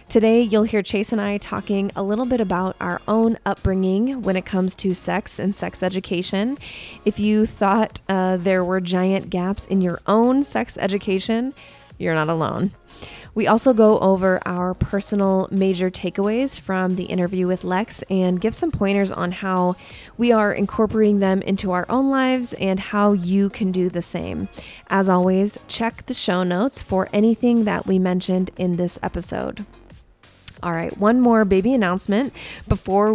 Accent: American